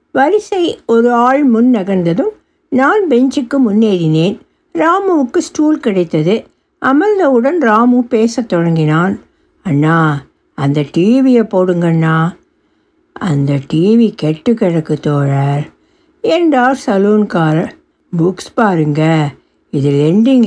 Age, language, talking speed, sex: 60-79, Tamil, 90 wpm, female